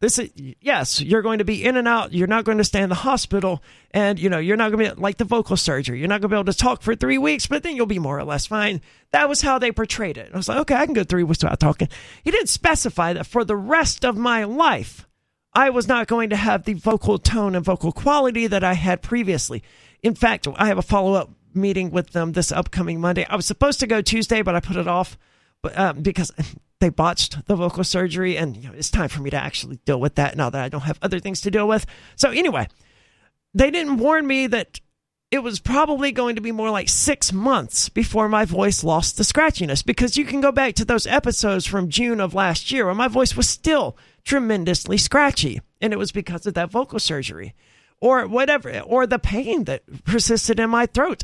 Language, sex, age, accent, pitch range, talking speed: English, male, 40-59, American, 180-240 Hz, 240 wpm